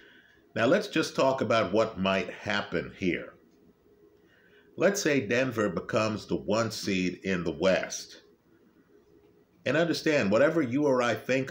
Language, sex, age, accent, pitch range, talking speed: English, male, 50-69, American, 100-130 Hz, 135 wpm